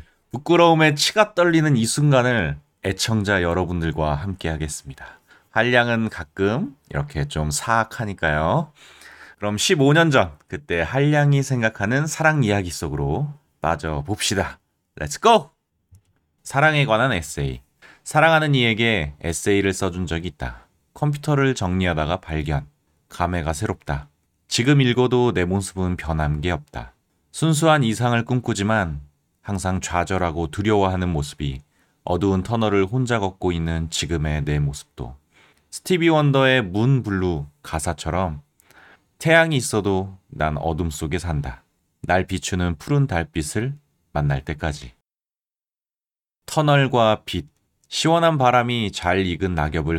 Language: Korean